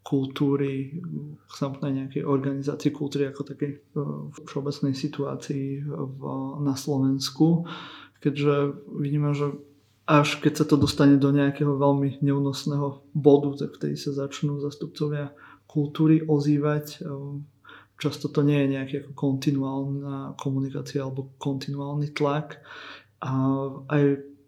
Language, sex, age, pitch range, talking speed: Slovak, male, 20-39, 135-145 Hz, 110 wpm